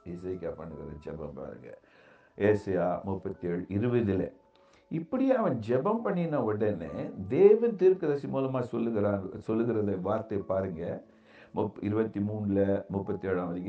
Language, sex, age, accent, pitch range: Tamil, male, 60-79, native, 110-180 Hz